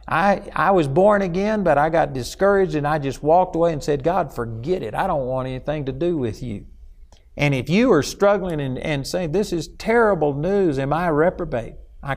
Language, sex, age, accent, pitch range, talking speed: English, male, 50-69, American, 120-165 Hz, 215 wpm